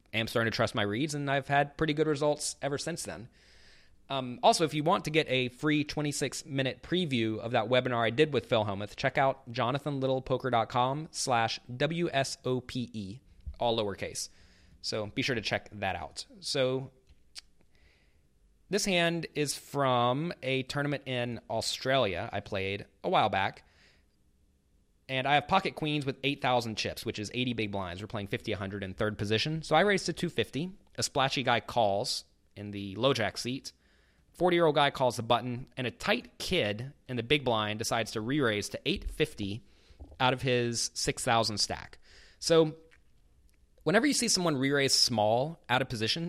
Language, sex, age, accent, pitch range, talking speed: English, male, 30-49, American, 105-145 Hz, 165 wpm